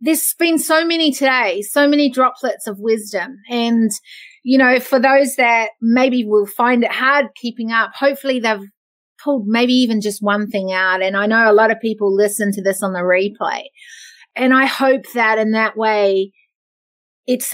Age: 30-49